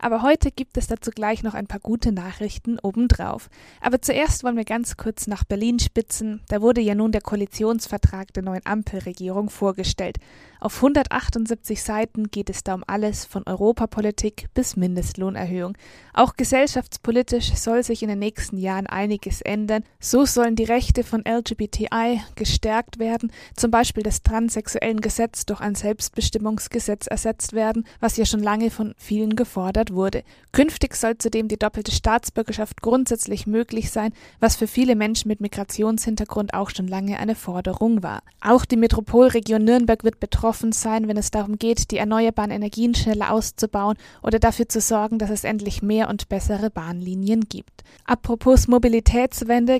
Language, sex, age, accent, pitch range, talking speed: German, female, 20-39, German, 210-235 Hz, 160 wpm